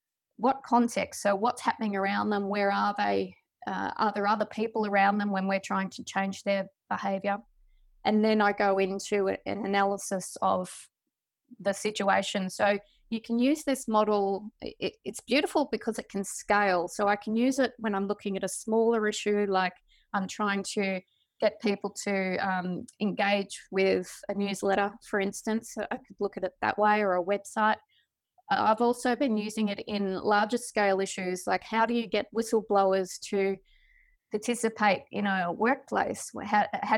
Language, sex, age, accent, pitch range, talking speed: English, female, 20-39, Australian, 195-225 Hz, 170 wpm